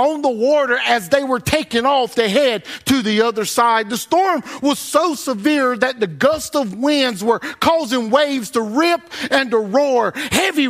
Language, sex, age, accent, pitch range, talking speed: English, male, 50-69, American, 190-275 Hz, 185 wpm